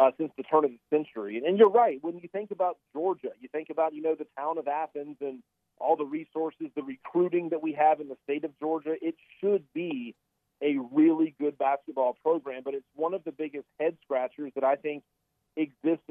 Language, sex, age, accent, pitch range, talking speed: English, male, 40-59, American, 140-170 Hz, 220 wpm